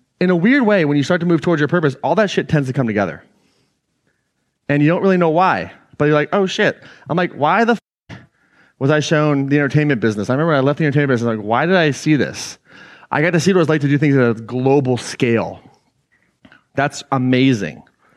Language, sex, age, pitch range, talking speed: English, male, 30-49, 130-170 Hz, 240 wpm